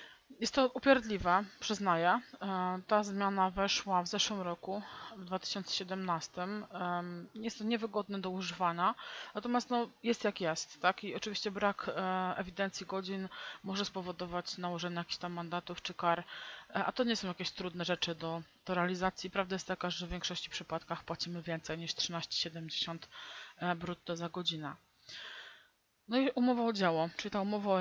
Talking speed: 160 wpm